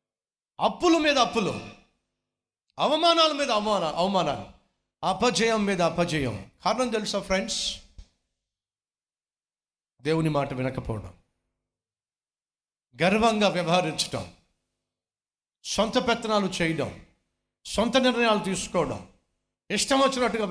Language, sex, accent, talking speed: Telugu, male, native, 75 wpm